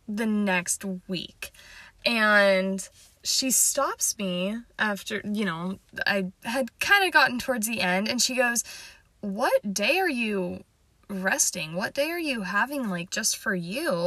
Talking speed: 150 wpm